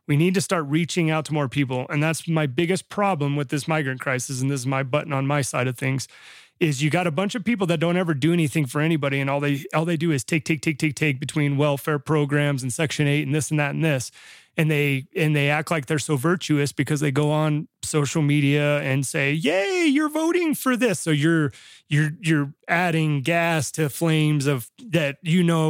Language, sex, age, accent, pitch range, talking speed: English, male, 30-49, American, 140-165 Hz, 235 wpm